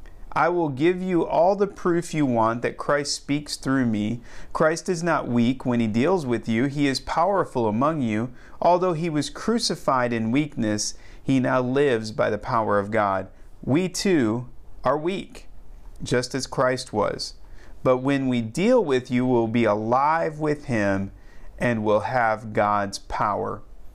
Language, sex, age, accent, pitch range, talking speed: English, male, 40-59, American, 110-145 Hz, 165 wpm